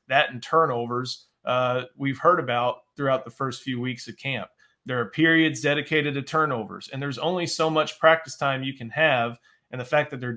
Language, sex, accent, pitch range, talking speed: English, male, American, 125-145 Hz, 205 wpm